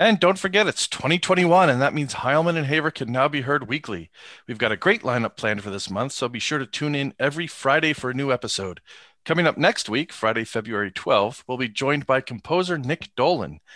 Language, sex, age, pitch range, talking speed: English, male, 40-59, 120-150 Hz, 220 wpm